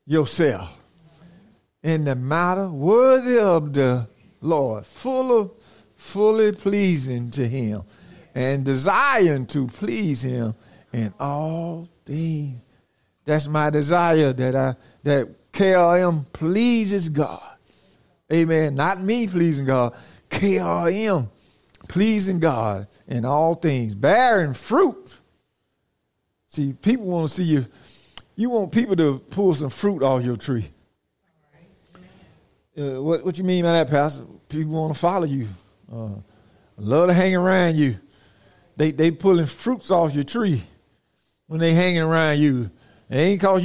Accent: American